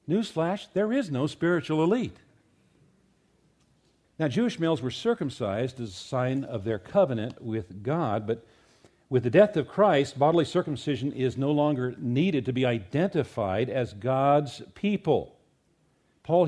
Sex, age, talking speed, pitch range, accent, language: male, 50-69, 140 wpm, 125-170 Hz, American, English